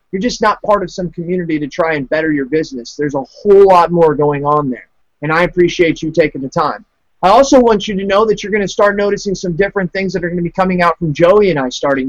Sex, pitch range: male, 165-200 Hz